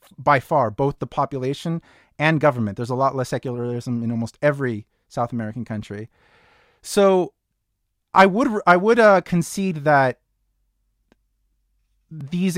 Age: 30-49